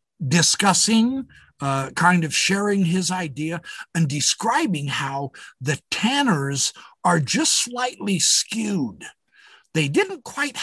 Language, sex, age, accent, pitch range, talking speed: English, male, 60-79, American, 135-220 Hz, 105 wpm